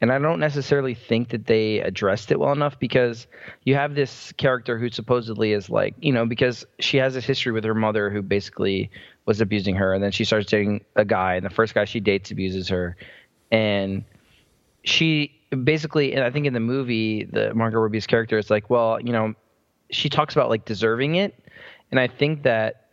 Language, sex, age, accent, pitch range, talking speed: English, male, 20-39, American, 105-135 Hz, 205 wpm